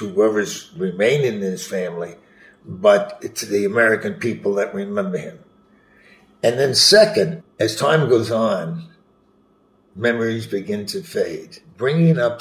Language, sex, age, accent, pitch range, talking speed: English, male, 60-79, American, 105-140 Hz, 125 wpm